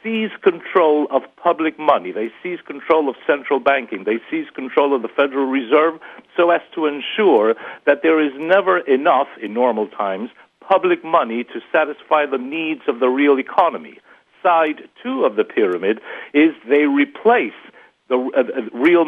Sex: male